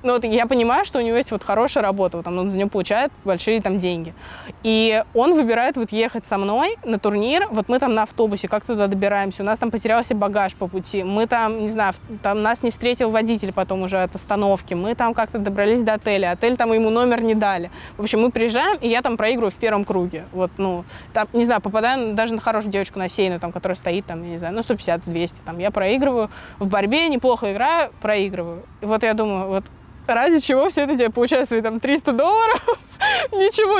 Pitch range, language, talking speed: 200-245 Hz, Russian, 215 wpm